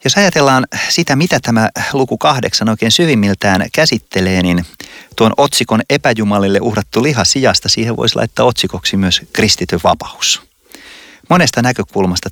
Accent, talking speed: native, 120 wpm